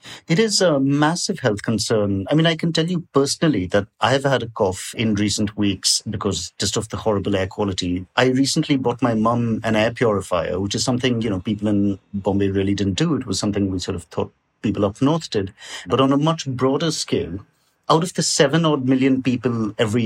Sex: male